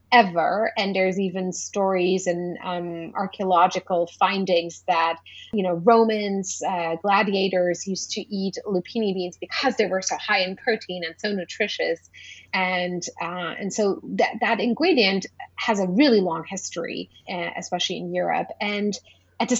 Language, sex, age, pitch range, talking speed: English, female, 30-49, 180-220 Hz, 150 wpm